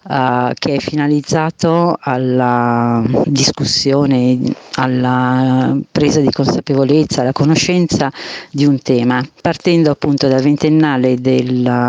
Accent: native